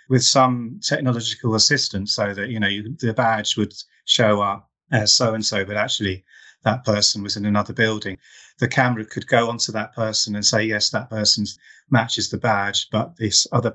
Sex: male